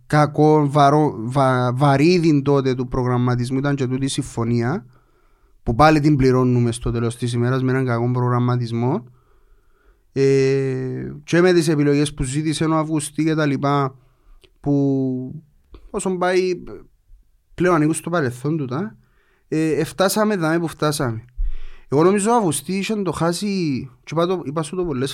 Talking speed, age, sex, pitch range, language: 135 wpm, 30-49, male, 130-170 Hz, Greek